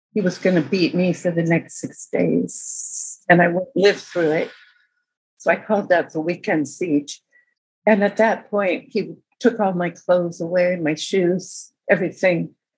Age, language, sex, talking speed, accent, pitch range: 50-69, English, female, 175 wpm, American, 170-205 Hz